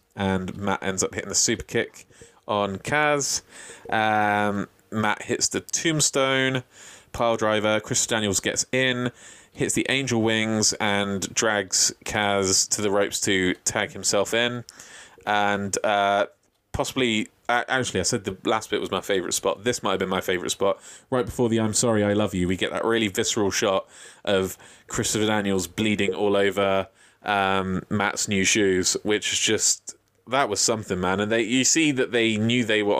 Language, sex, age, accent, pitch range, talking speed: English, male, 20-39, British, 100-120 Hz, 175 wpm